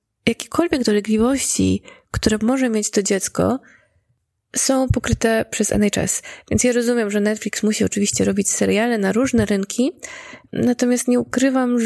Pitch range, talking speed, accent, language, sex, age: 205-245 Hz, 130 wpm, native, Polish, female, 20-39